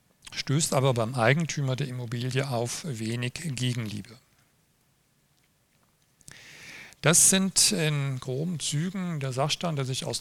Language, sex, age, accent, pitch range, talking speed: German, male, 40-59, German, 125-155 Hz, 110 wpm